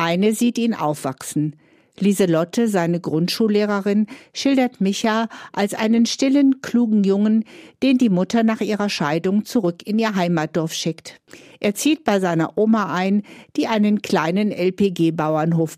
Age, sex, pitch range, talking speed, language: 50-69, female, 170-225 Hz, 135 wpm, German